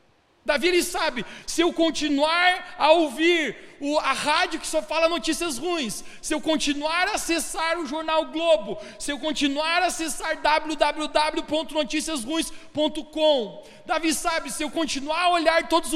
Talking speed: 145 wpm